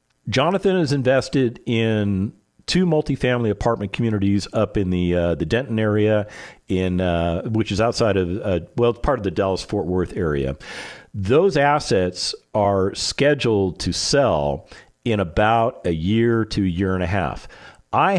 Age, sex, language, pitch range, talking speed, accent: 50-69, male, English, 95-120 Hz, 155 wpm, American